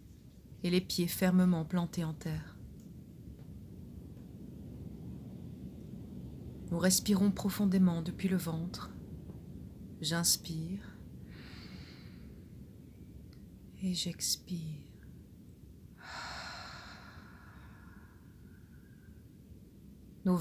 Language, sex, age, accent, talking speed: French, female, 30-49, French, 50 wpm